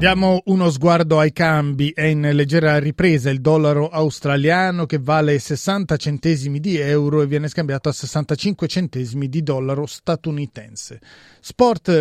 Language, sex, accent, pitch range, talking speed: Italian, male, native, 145-175 Hz, 140 wpm